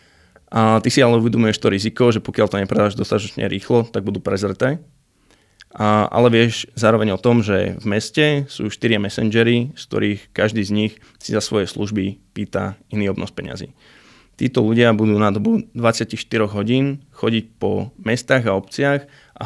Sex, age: male, 20-39